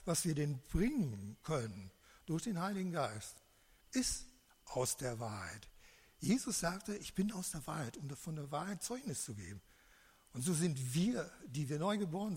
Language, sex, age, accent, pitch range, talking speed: German, male, 60-79, German, 125-190 Hz, 170 wpm